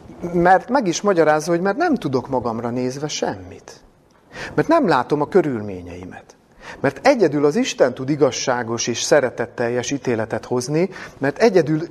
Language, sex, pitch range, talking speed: Hungarian, male, 115-165 Hz, 140 wpm